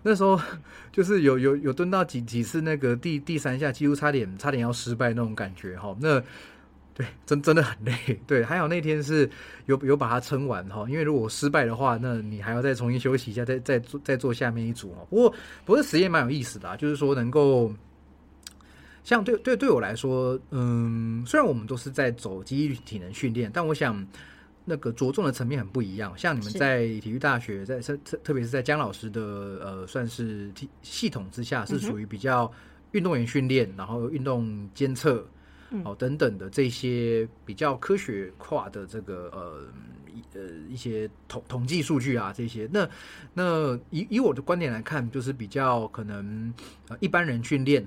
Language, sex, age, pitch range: Chinese, male, 30-49, 110-145 Hz